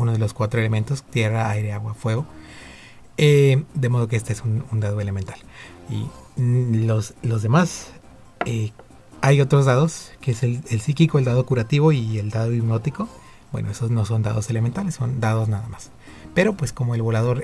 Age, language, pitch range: 30-49, Spanish, 115-155 Hz